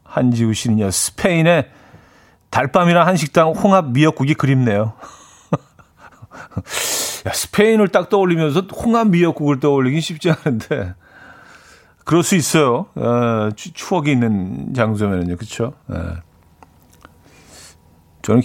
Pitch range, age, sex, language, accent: 105-150 Hz, 40-59, male, Korean, native